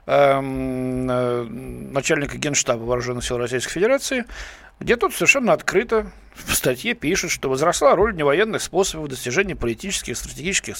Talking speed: 120 wpm